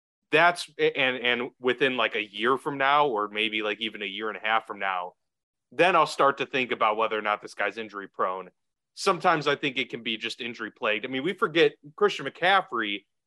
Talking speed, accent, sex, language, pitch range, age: 215 wpm, American, male, English, 110-165 Hz, 30-49